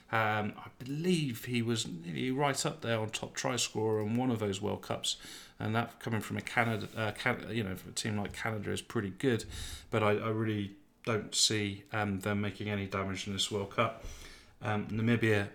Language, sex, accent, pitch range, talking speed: English, male, British, 105-115 Hz, 210 wpm